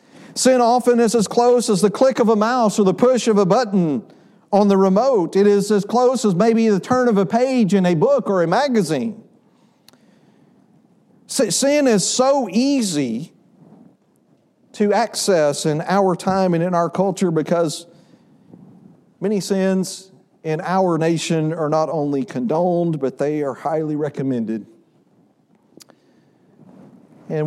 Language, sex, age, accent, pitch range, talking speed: English, male, 50-69, American, 150-230 Hz, 145 wpm